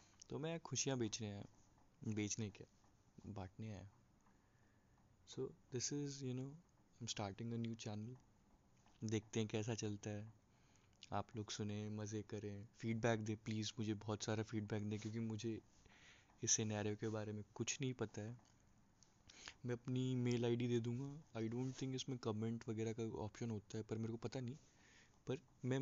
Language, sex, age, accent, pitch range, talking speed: Hindi, male, 20-39, native, 105-120 Hz, 140 wpm